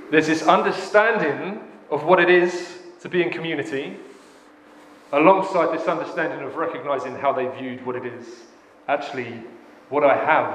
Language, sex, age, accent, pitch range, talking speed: English, male, 30-49, British, 145-185 Hz, 150 wpm